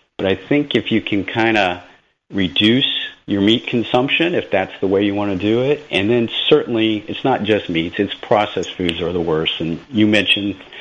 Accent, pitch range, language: American, 90-115 Hz, English